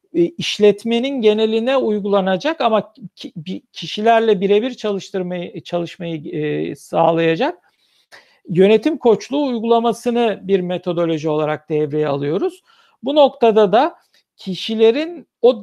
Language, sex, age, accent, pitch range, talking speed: Turkish, male, 50-69, native, 195-250 Hz, 80 wpm